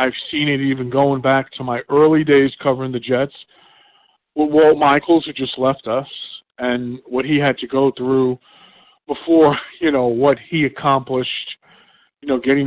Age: 40-59